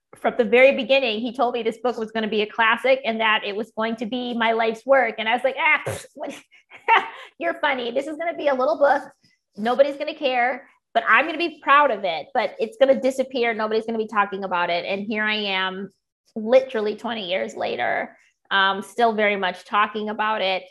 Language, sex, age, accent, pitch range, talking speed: English, female, 20-39, American, 210-255 Hz, 235 wpm